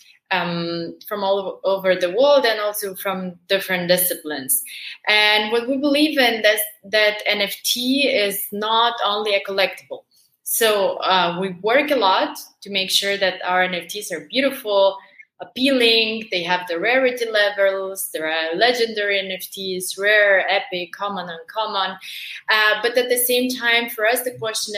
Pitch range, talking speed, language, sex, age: 190-235 Hz, 150 wpm, English, female, 20-39